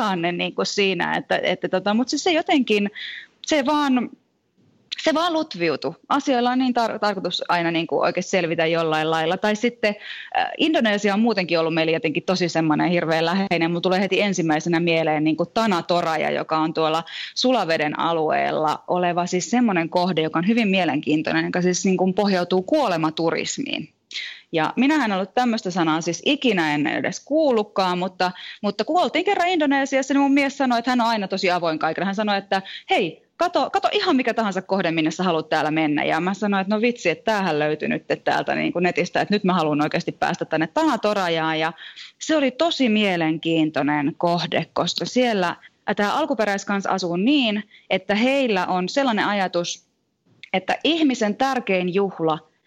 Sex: female